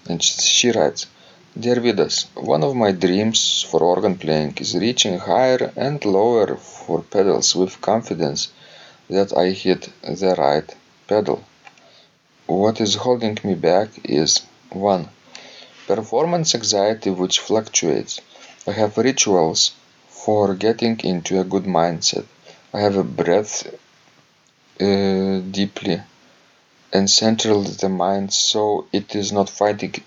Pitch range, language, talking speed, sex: 90-105 Hz, English, 125 wpm, male